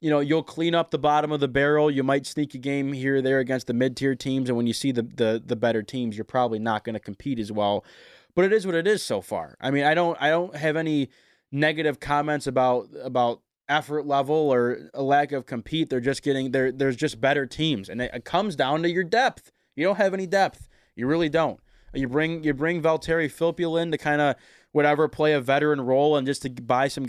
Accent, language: American, English